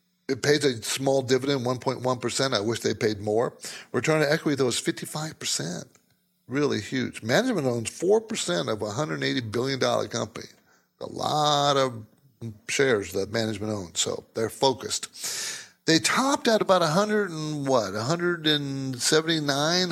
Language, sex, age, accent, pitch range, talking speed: English, male, 60-79, American, 115-160 Hz, 135 wpm